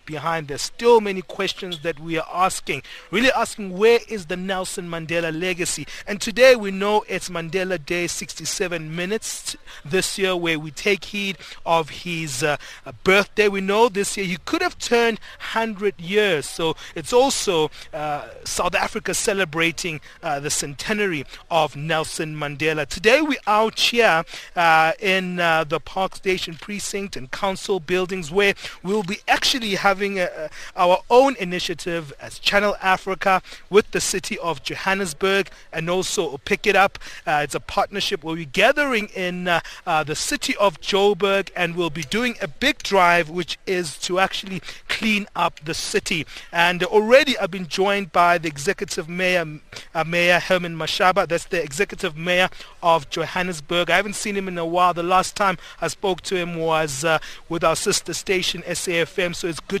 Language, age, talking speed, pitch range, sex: English, 30-49, 170 wpm, 165-200 Hz, male